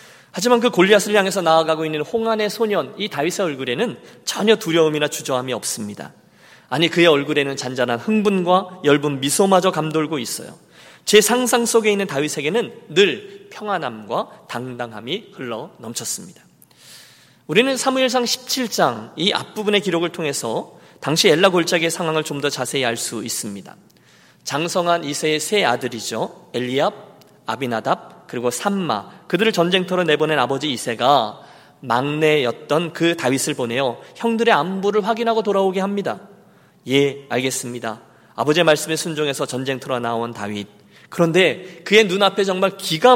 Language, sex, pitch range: Korean, male, 145-210 Hz